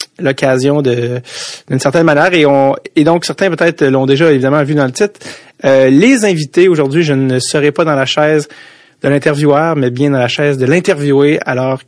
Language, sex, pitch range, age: French, male, 130-155 Hz, 30-49